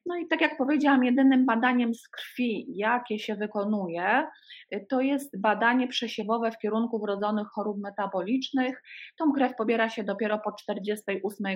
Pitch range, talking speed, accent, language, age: 200-235 Hz, 145 wpm, native, Polish, 30-49